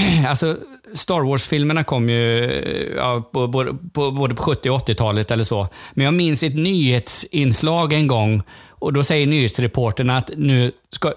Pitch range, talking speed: 110-140 Hz, 145 wpm